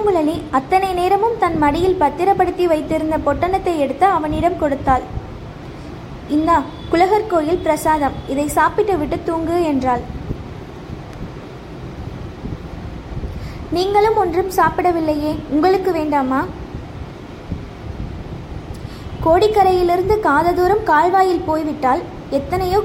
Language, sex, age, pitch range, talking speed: Tamil, female, 20-39, 310-370 Hz, 75 wpm